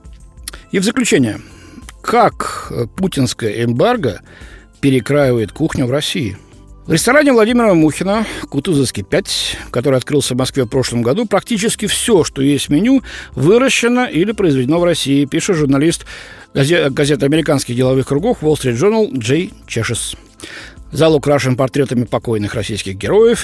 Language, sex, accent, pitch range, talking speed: Russian, male, native, 130-190 Hz, 130 wpm